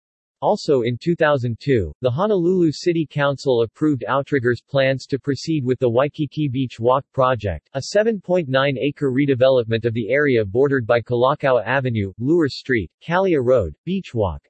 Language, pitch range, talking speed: English, 120-150 Hz, 140 wpm